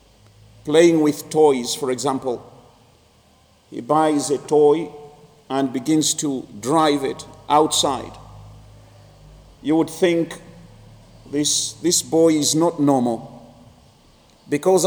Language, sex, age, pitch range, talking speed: English, male, 50-69, 140-175 Hz, 100 wpm